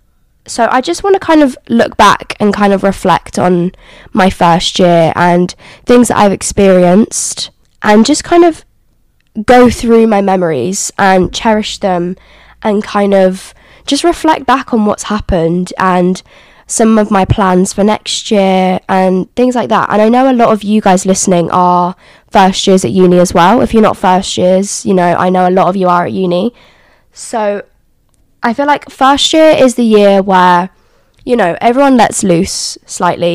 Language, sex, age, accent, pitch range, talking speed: English, female, 10-29, British, 185-235 Hz, 185 wpm